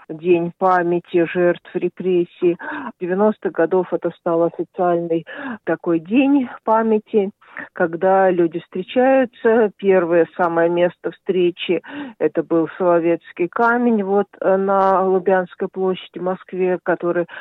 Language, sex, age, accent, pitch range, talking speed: Russian, female, 40-59, native, 165-195 Hz, 105 wpm